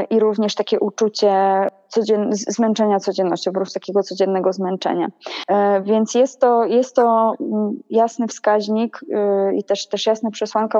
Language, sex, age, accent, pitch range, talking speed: Polish, female, 20-39, native, 195-225 Hz, 115 wpm